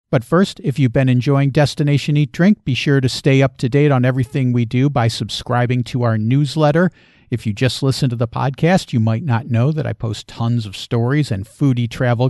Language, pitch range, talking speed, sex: English, 120-145 Hz, 220 wpm, male